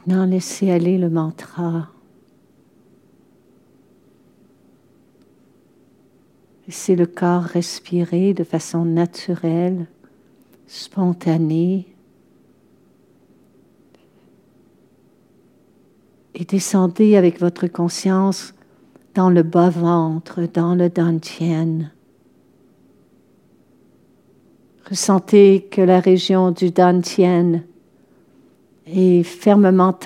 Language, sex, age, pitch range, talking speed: French, female, 60-79, 165-185 Hz, 65 wpm